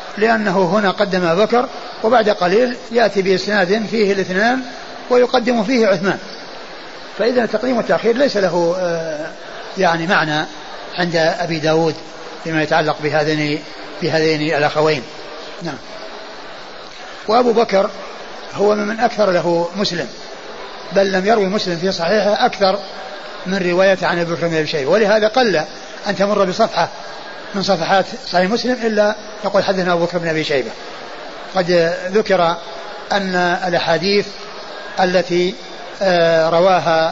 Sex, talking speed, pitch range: male, 115 wpm, 165-205 Hz